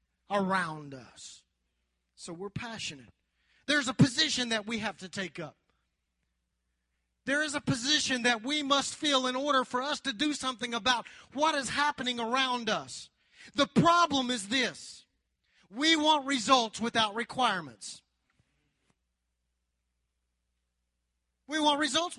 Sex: male